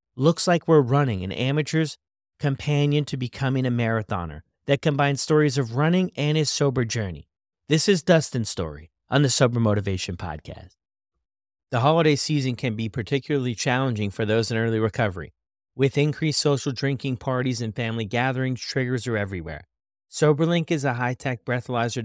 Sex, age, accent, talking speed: male, 30-49, American, 155 wpm